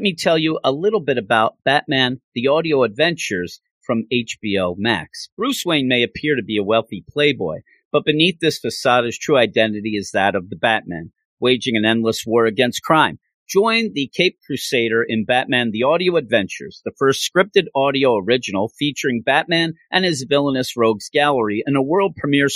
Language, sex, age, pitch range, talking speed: English, male, 40-59, 120-170 Hz, 180 wpm